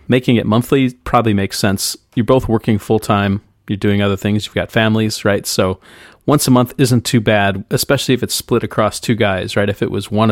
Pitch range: 100-120 Hz